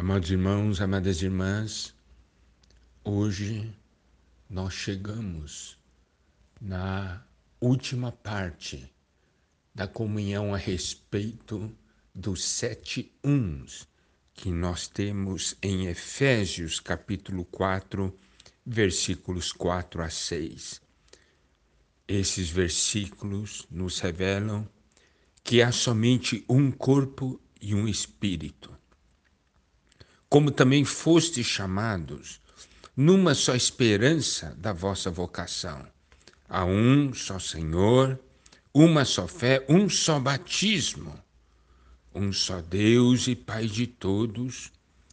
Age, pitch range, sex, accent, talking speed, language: 60-79, 85-120 Hz, male, Brazilian, 90 wpm, Portuguese